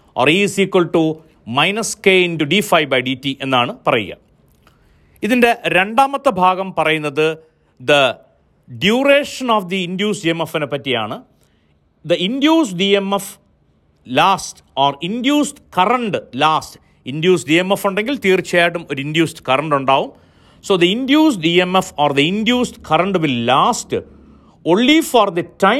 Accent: native